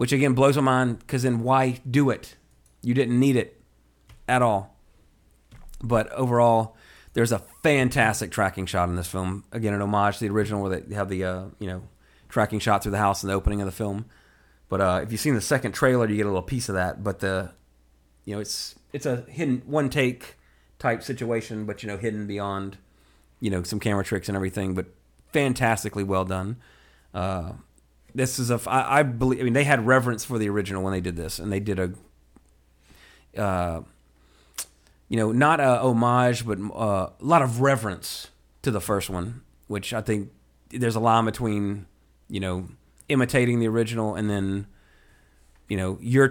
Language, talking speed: English, 195 wpm